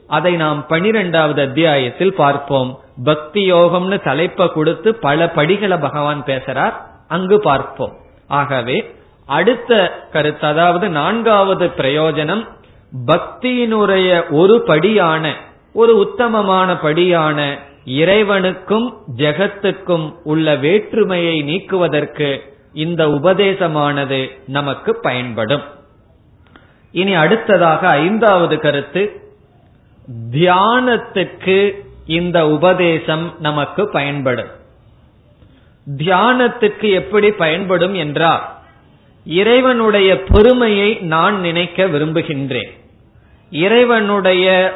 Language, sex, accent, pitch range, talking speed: Tamil, male, native, 150-195 Hz, 65 wpm